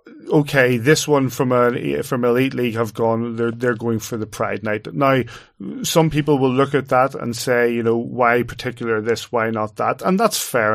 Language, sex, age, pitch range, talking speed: English, male, 30-49, 115-130 Hz, 205 wpm